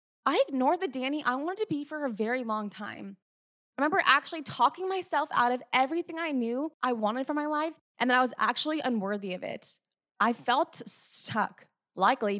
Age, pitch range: 20-39, 200-255 Hz